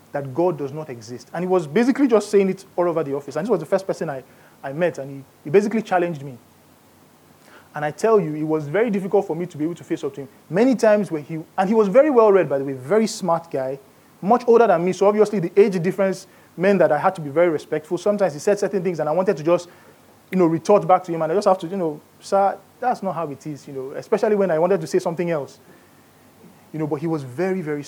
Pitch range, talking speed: 145-195 Hz, 275 wpm